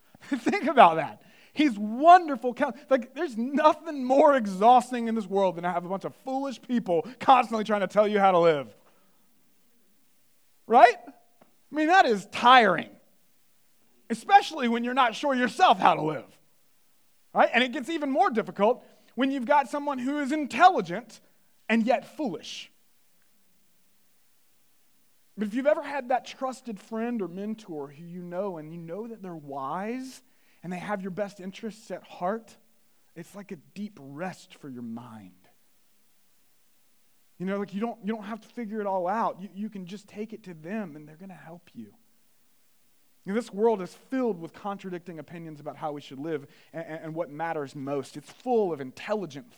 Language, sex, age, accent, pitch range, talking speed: English, male, 30-49, American, 175-245 Hz, 175 wpm